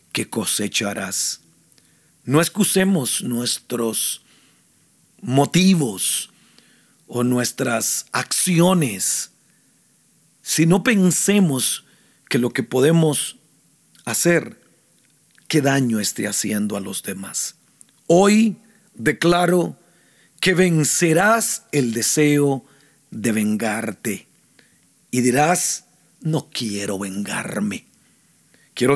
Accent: Mexican